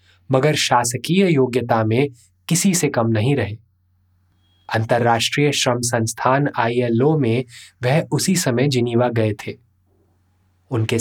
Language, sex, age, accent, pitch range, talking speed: Hindi, male, 20-39, native, 100-135 Hz, 115 wpm